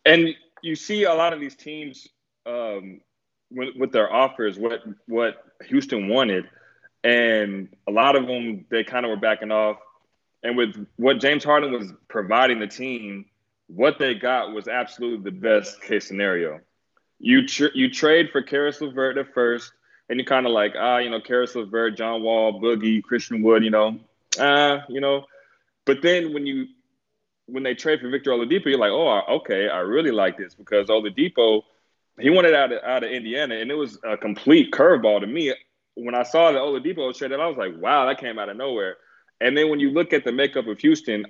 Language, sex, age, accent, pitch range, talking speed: English, male, 20-39, American, 110-145 Hz, 195 wpm